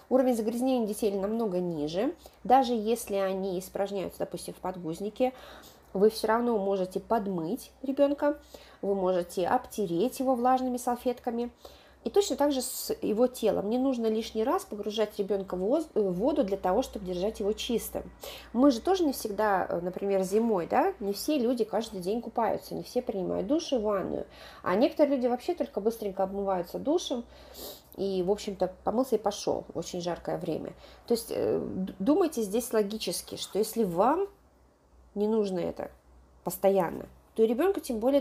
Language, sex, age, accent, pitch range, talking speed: Russian, female, 30-49, native, 190-250 Hz, 155 wpm